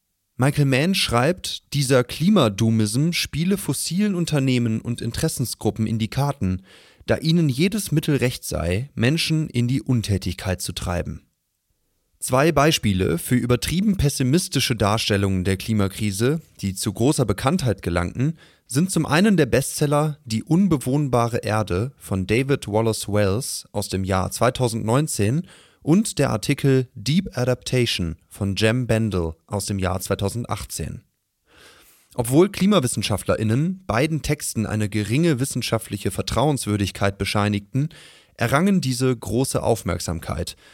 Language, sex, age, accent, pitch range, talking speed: German, male, 30-49, German, 100-145 Hz, 115 wpm